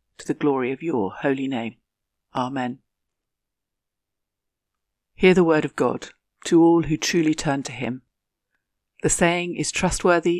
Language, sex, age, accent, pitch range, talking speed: English, female, 50-69, British, 140-170 Hz, 140 wpm